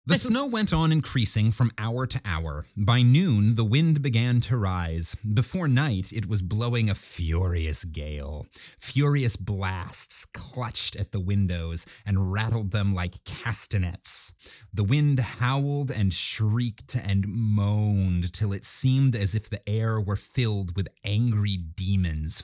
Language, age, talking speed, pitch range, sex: English, 30-49, 145 wpm, 95-145 Hz, male